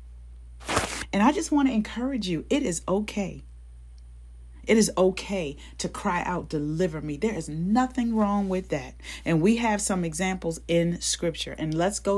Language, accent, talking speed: English, American, 170 wpm